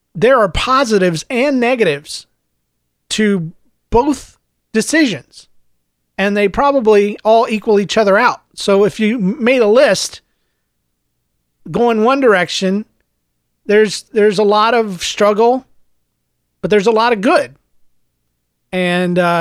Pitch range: 140-210 Hz